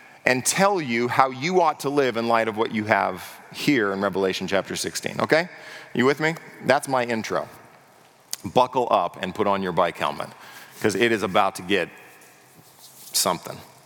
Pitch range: 115-140 Hz